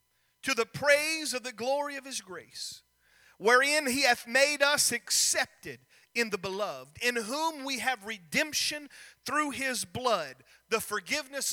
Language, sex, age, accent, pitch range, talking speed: English, male, 40-59, American, 175-255 Hz, 145 wpm